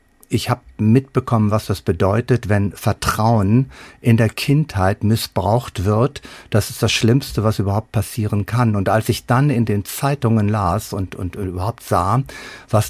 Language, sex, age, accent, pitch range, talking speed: German, male, 50-69, German, 105-125 Hz, 160 wpm